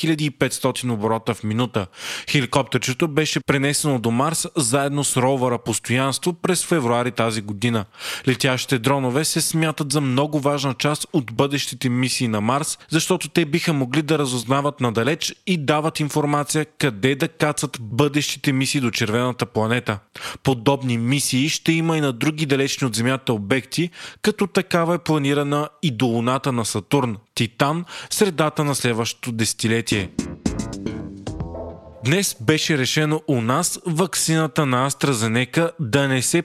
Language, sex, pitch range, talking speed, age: Bulgarian, male, 125-155 Hz, 140 wpm, 20-39